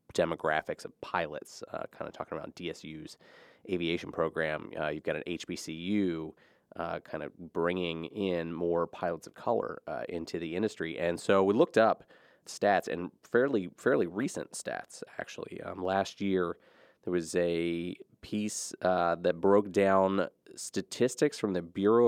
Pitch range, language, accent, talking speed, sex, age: 85-100 Hz, English, American, 150 wpm, male, 30-49